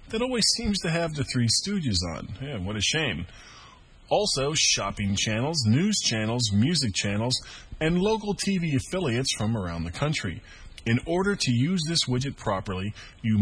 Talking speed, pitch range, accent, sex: 160 wpm, 100-145 Hz, American, male